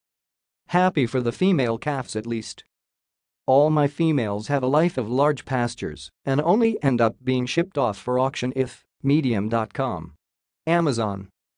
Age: 40-59